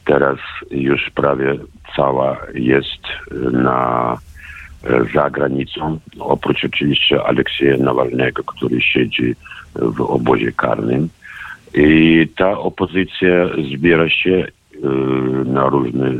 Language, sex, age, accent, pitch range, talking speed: Polish, male, 50-69, native, 65-80 Hz, 85 wpm